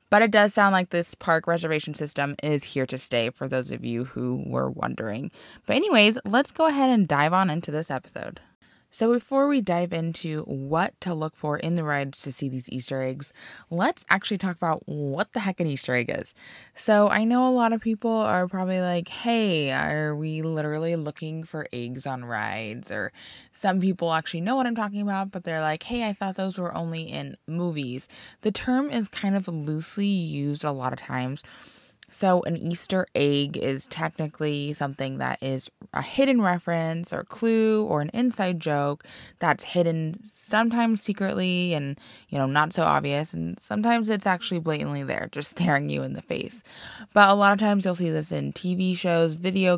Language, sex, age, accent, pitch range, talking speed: English, female, 20-39, American, 145-200 Hz, 195 wpm